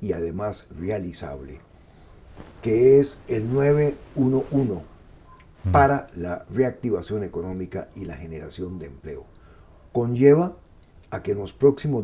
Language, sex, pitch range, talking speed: Spanish, male, 85-135 Hz, 110 wpm